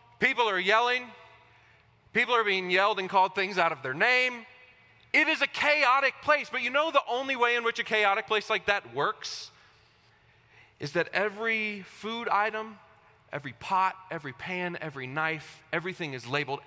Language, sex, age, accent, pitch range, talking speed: English, male, 30-49, American, 150-225 Hz, 170 wpm